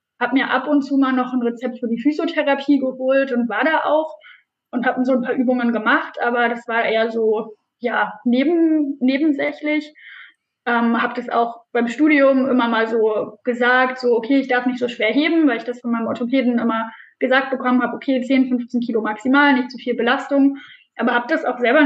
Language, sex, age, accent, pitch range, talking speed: German, female, 10-29, German, 240-280 Hz, 200 wpm